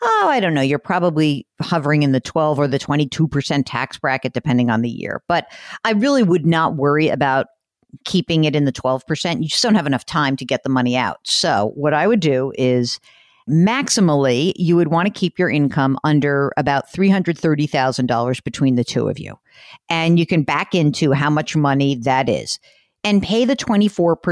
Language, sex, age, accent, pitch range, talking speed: English, female, 50-69, American, 145-200 Hz, 190 wpm